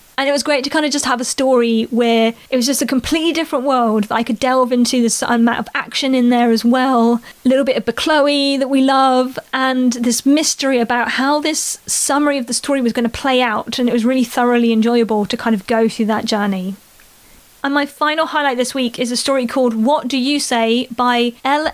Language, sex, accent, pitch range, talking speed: English, female, British, 230-280 Hz, 230 wpm